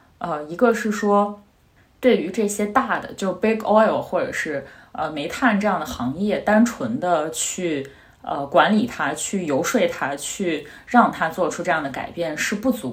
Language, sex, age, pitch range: Chinese, female, 20-39, 160-225 Hz